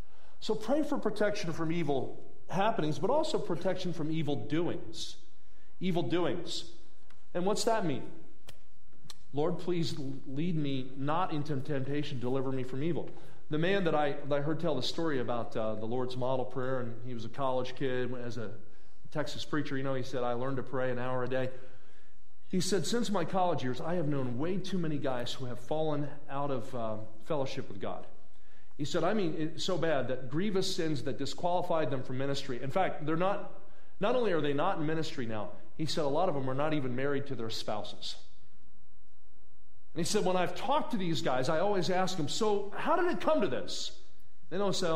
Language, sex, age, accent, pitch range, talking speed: English, male, 40-59, American, 130-180 Hz, 205 wpm